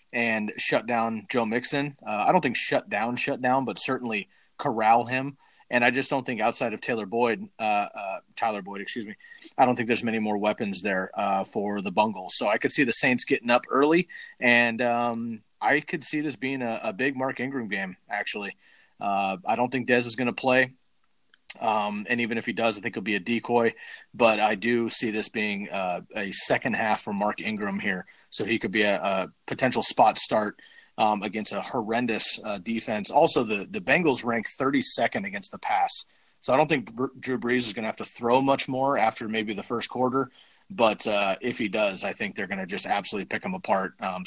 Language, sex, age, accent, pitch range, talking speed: English, male, 30-49, American, 110-130 Hz, 220 wpm